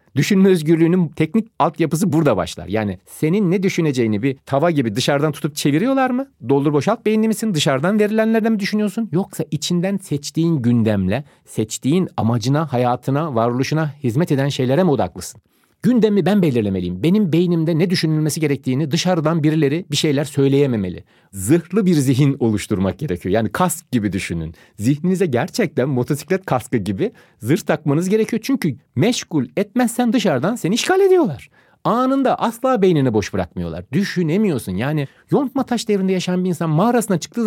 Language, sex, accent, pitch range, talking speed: Turkish, male, native, 115-185 Hz, 145 wpm